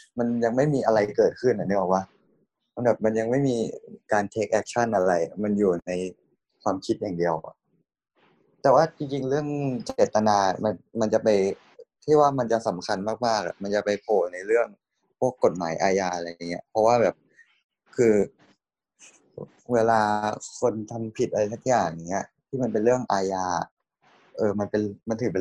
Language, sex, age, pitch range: Thai, male, 20-39, 100-125 Hz